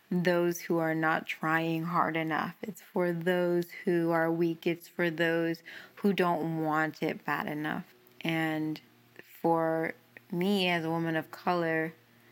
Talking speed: 145 wpm